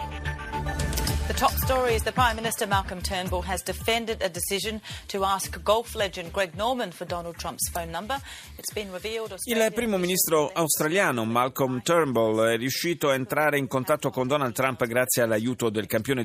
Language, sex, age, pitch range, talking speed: Italian, male, 40-59, 110-145 Hz, 70 wpm